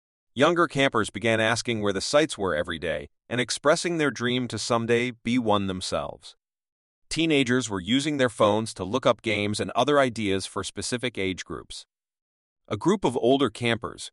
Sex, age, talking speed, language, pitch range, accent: male, 40-59, 170 wpm, English, 100-130 Hz, American